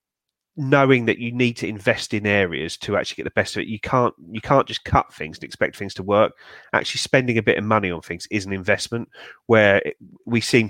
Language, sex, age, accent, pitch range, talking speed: English, male, 30-49, British, 95-115 Hz, 230 wpm